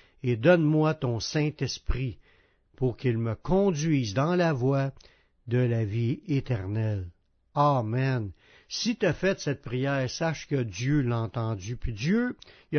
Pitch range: 125-180 Hz